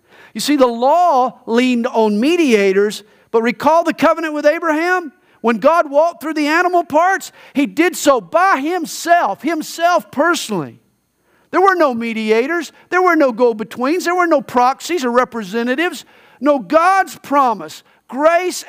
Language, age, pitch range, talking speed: English, 50-69, 185-295 Hz, 145 wpm